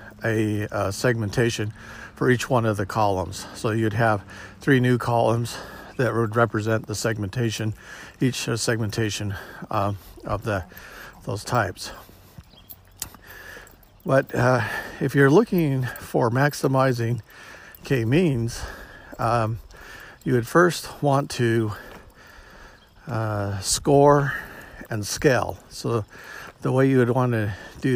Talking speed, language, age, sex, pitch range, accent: 115 wpm, English, 50-69, male, 105-125 Hz, American